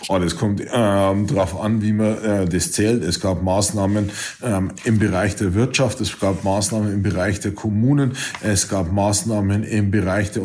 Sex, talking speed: male, 185 wpm